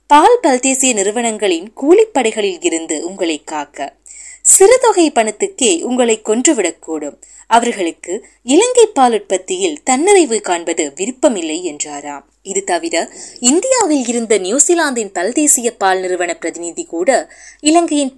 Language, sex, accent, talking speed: Tamil, female, native, 100 wpm